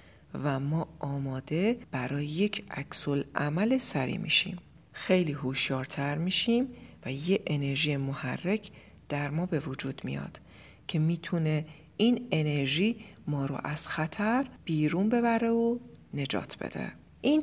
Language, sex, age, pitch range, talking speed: Persian, female, 40-59, 145-195 Hz, 120 wpm